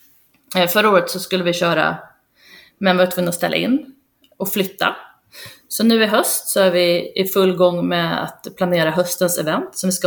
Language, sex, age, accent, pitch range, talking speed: Swedish, female, 30-49, native, 175-205 Hz, 185 wpm